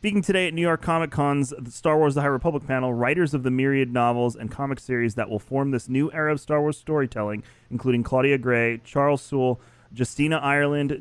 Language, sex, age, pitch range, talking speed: English, male, 30-49, 115-145 Hz, 205 wpm